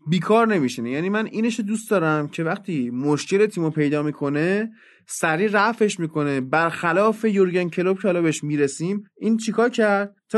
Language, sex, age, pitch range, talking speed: Persian, male, 30-49, 155-210 Hz, 155 wpm